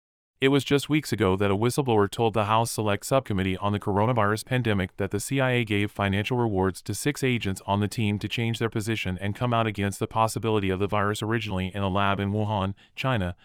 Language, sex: English, male